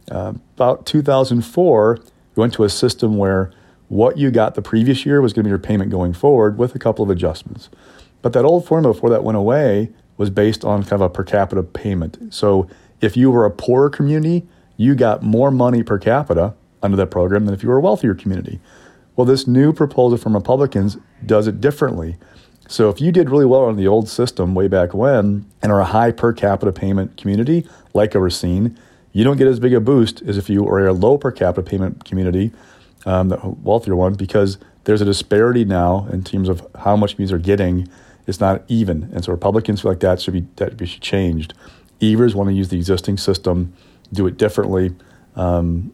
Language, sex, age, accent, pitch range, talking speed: English, male, 40-59, American, 95-115 Hz, 210 wpm